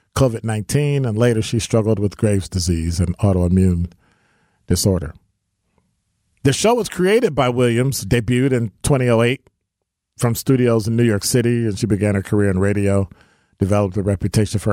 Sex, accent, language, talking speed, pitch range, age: male, American, English, 150 wpm, 100-130 Hz, 40-59